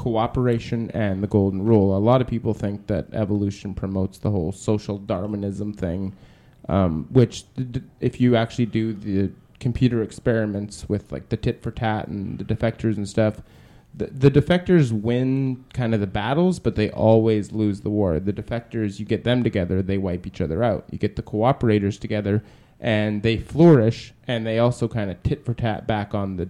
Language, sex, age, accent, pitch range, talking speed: English, male, 20-39, American, 100-120 Hz, 185 wpm